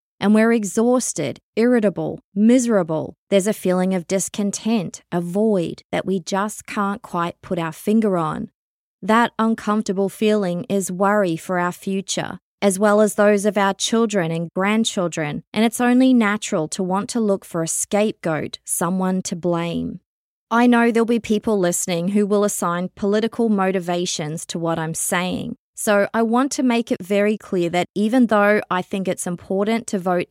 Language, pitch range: English, 180-220 Hz